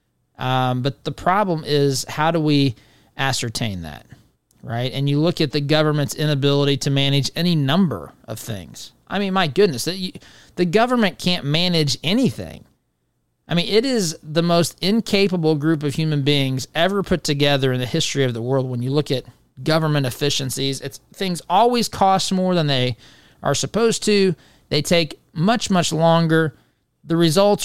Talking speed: 165 wpm